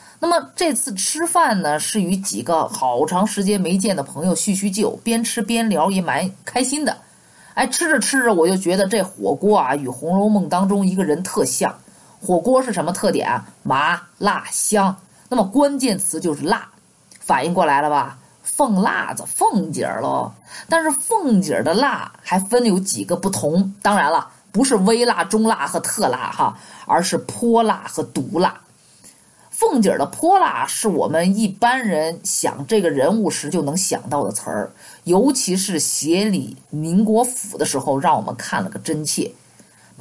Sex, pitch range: female, 190-250 Hz